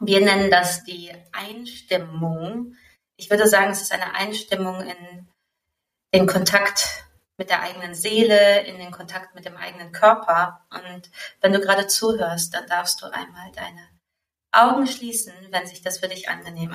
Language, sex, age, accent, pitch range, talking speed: German, female, 20-39, German, 165-195 Hz, 160 wpm